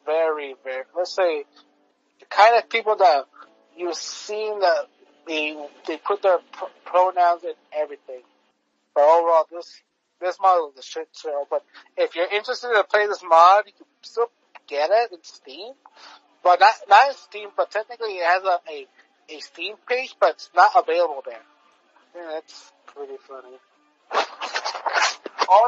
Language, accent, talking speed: English, American, 160 wpm